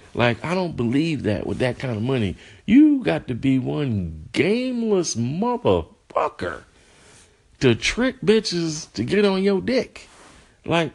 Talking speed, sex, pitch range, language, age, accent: 140 wpm, male, 105-155 Hz, English, 50-69, American